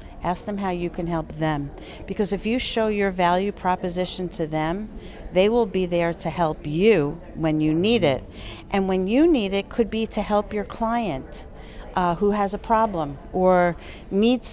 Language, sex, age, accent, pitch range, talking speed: English, female, 50-69, American, 175-225 Hz, 185 wpm